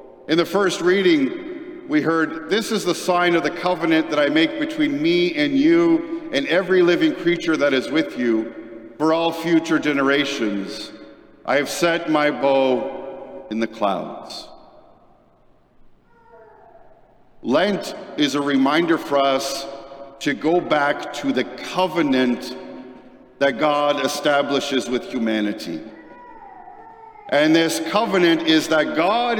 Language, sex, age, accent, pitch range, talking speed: English, male, 50-69, American, 150-215 Hz, 130 wpm